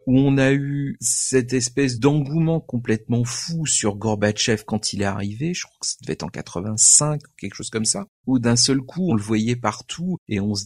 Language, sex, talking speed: French, male, 215 wpm